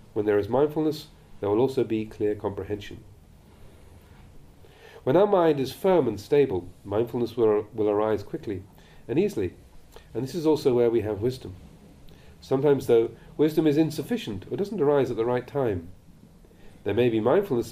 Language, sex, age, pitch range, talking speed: English, male, 40-59, 100-135 Hz, 165 wpm